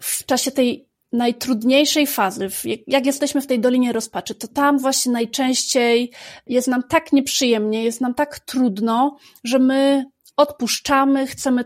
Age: 30-49